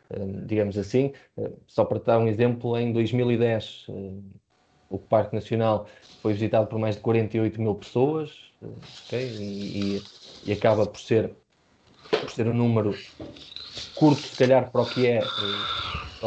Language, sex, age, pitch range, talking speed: Portuguese, male, 20-39, 105-125 Hz, 120 wpm